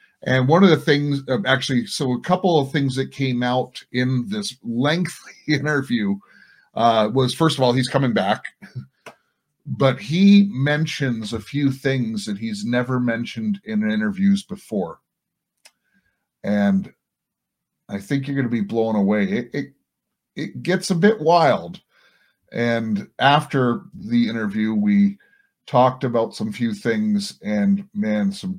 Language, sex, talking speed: English, male, 145 wpm